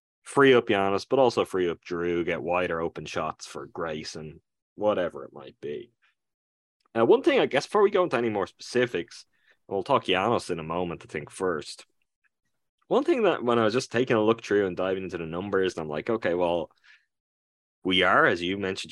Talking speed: 210 wpm